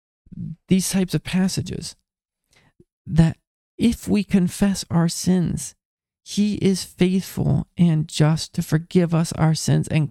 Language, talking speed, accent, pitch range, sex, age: English, 125 wpm, American, 150-175 Hz, male, 40-59